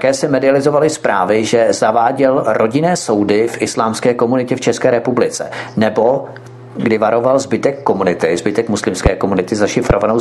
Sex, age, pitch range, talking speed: male, 40-59, 110-130 Hz, 135 wpm